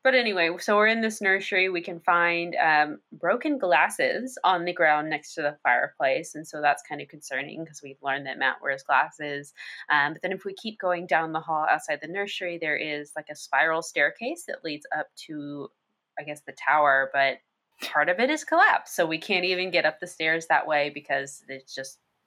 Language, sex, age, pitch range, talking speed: English, female, 20-39, 145-185 Hz, 215 wpm